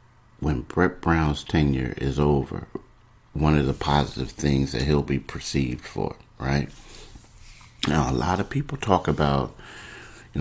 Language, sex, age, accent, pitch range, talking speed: English, male, 50-69, American, 70-90 Hz, 145 wpm